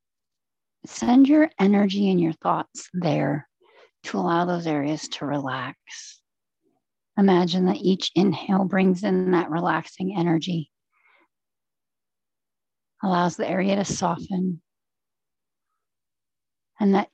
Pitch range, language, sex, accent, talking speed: 170-225 Hz, English, female, American, 100 wpm